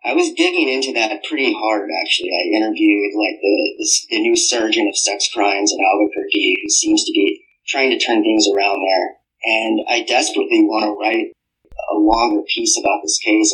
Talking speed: 190 wpm